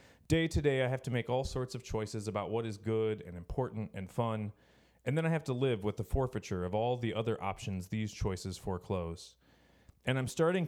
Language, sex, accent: English, male, American